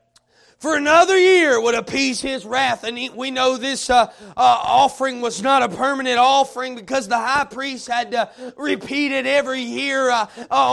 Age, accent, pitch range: 30-49, American, 250-305 Hz